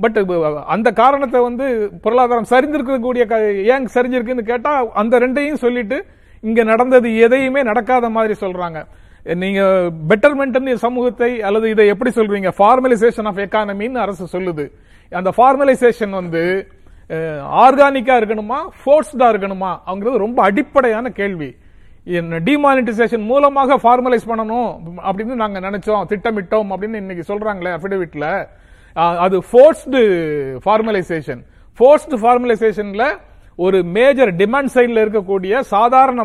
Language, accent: Tamil, native